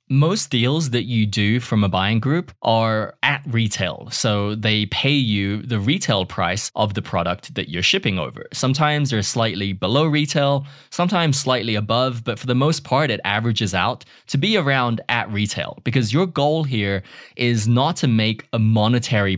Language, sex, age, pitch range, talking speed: English, male, 20-39, 105-135 Hz, 175 wpm